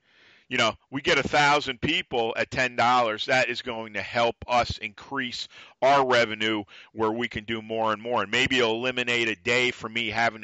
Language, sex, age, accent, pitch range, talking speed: English, male, 50-69, American, 115-135 Hz, 200 wpm